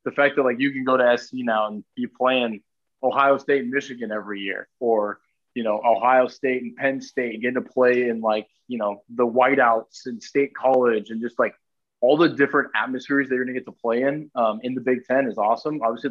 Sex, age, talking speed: male, 20-39, 225 wpm